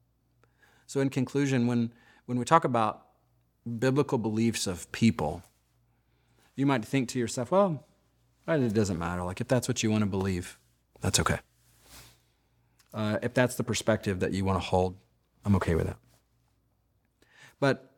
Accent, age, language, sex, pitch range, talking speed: American, 40-59, English, male, 105-130 Hz, 145 wpm